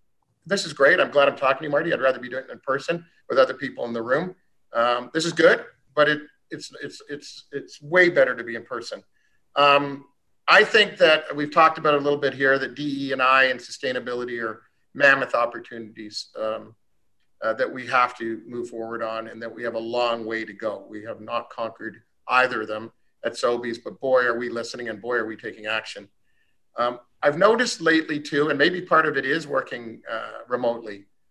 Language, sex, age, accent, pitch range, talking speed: English, male, 40-59, American, 120-155 Hz, 215 wpm